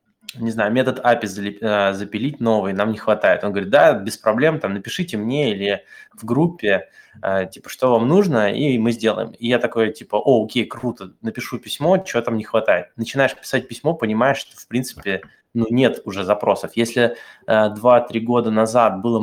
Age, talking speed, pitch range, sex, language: 20-39, 175 wpm, 105-120 Hz, male, Russian